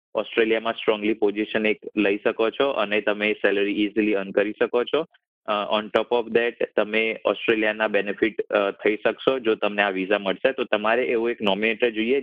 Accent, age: native, 20-39